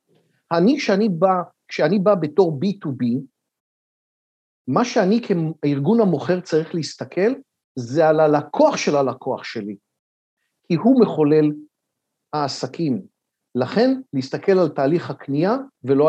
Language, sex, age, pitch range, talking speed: Hebrew, male, 50-69, 145-200 Hz, 110 wpm